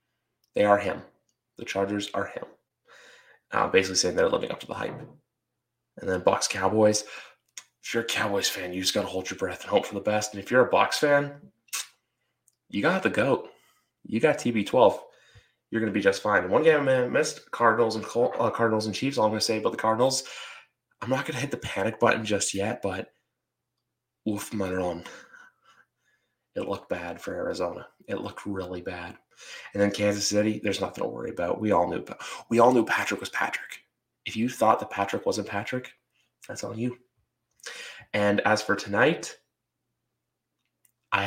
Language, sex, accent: English, male, American